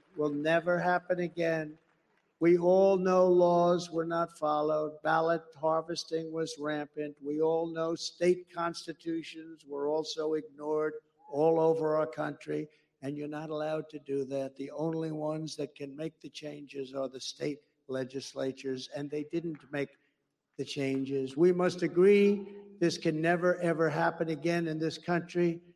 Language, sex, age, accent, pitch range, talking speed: English, male, 60-79, American, 155-200 Hz, 150 wpm